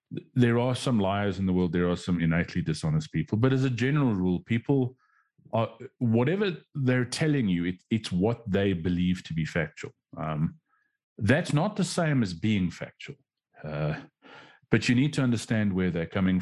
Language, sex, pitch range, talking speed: English, male, 90-125 Hz, 170 wpm